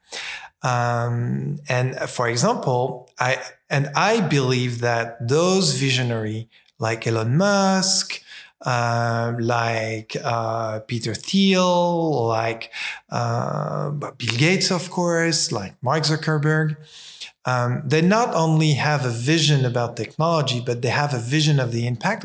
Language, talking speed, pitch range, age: Ukrainian, 120 wpm, 125-165 Hz, 40-59